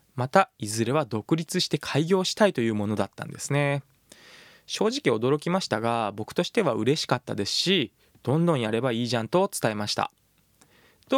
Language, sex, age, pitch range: Japanese, male, 20-39, 120-160 Hz